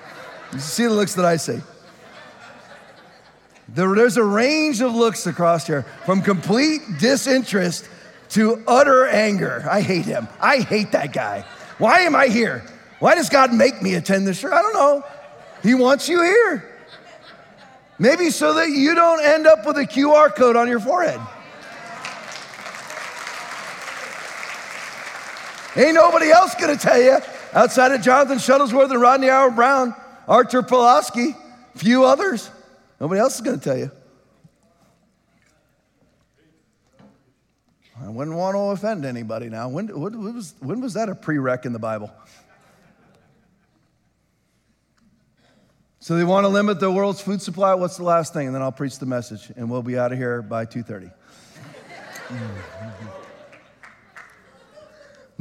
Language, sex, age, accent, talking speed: English, male, 40-59, American, 140 wpm